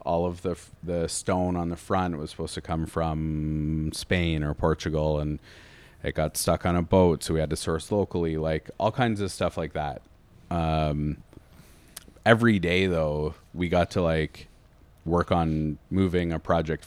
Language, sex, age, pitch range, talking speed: English, male, 30-49, 80-90 Hz, 175 wpm